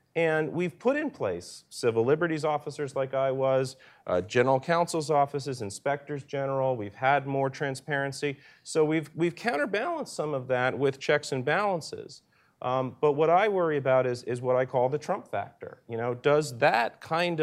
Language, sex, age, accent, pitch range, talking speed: English, male, 40-59, American, 125-155 Hz, 175 wpm